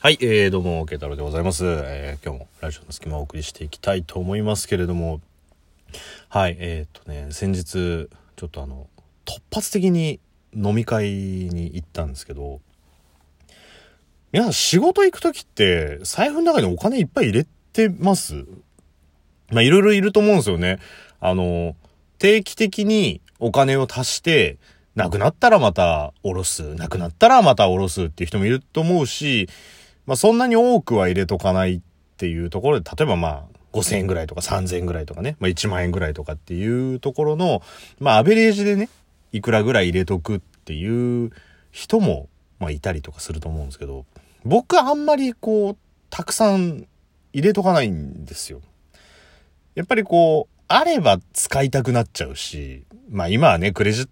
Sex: male